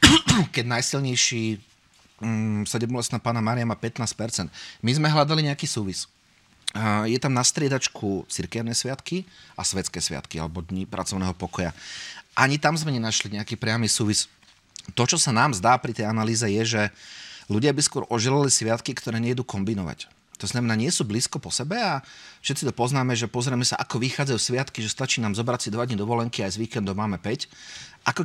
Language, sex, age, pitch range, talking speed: Slovak, male, 30-49, 105-130 Hz, 180 wpm